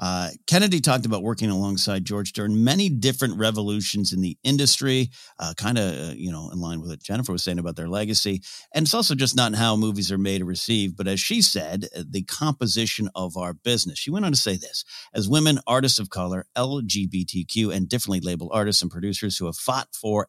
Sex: male